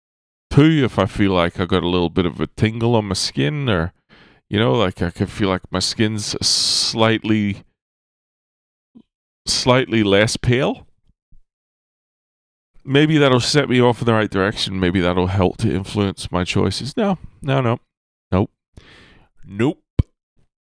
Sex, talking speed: male, 145 wpm